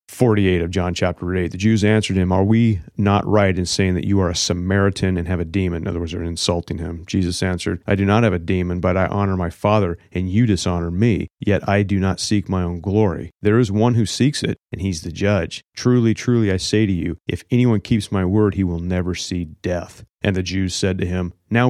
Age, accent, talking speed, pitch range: 30-49, American, 245 wpm, 90-110 Hz